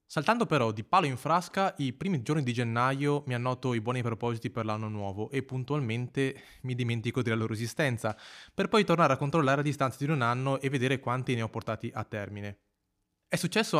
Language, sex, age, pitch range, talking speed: Italian, male, 20-39, 120-145 Hz, 200 wpm